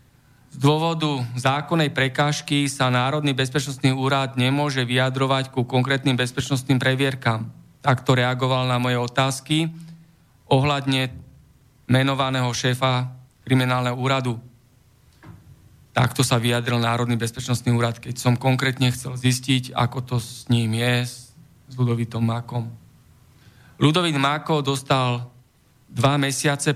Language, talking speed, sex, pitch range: Slovak, 110 wpm, male, 125-140 Hz